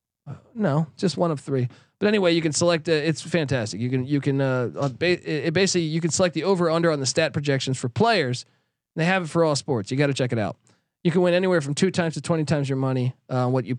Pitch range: 135-180 Hz